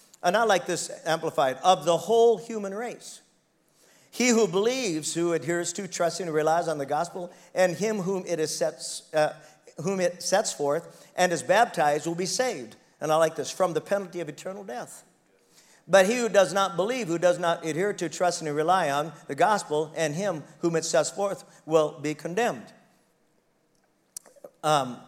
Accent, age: American, 50-69